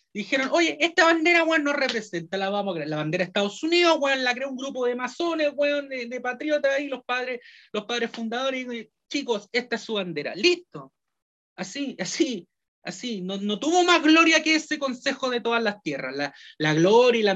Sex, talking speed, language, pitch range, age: male, 210 wpm, Spanish, 180-260 Hz, 30-49